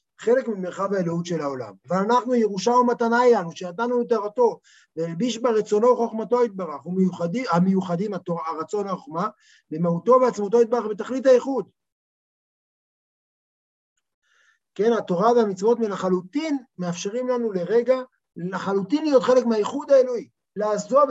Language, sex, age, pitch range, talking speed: Hebrew, male, 50-69, 185-245 Hz, 110 wpm